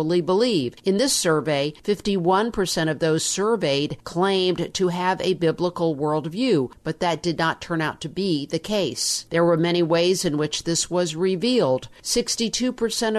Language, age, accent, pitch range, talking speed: English, 50-69, American, 160-190 Hz, 155 wpm